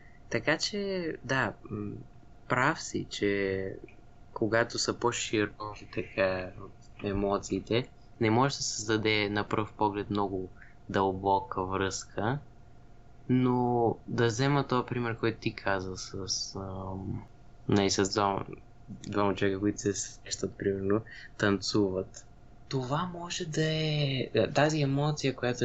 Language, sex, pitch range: Bulgarian, male, 100-125 Hz